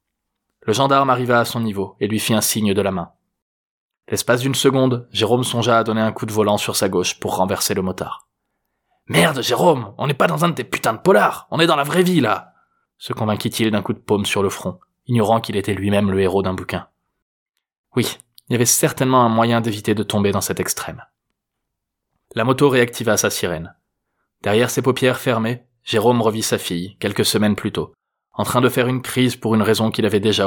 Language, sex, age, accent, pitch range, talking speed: French, male, 20-39, French, 100-125 Hz, 215 wpm